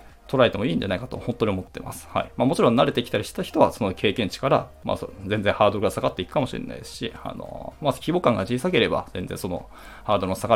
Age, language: 20-39, Japanese